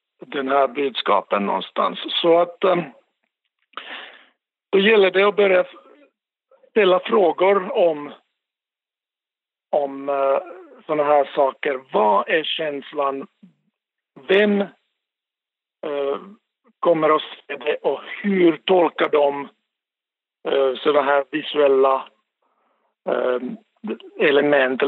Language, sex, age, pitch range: Swedish, male, 60-79, 145-195 Hz